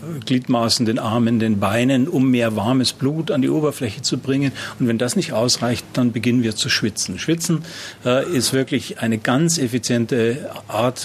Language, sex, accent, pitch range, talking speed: German, male, German, 115-145 Hz, 175 wpm